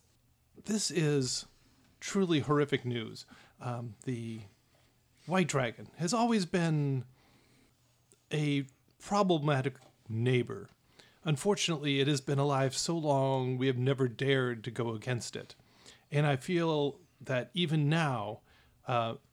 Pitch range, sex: 120-150 Hz, male